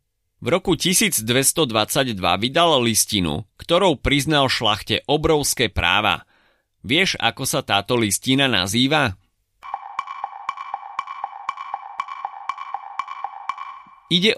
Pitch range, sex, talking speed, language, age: 105-150 Hz, male, 70 wpm, Slovak, 30-49